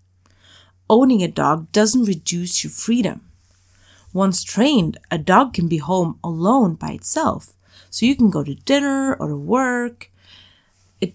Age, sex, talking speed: 30-49, female, 145 wpm